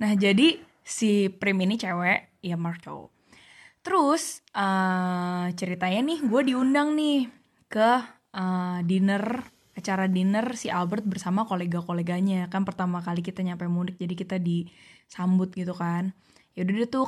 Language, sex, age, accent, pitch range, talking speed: Indonesian, female, 10-29, native, 185-255 Hz, 135 wpm